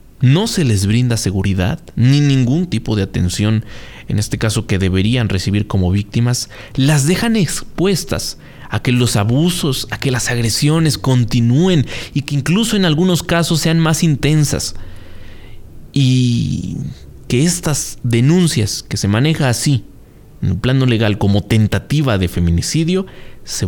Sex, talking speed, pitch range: male, 140 wpm, 105-140 Hz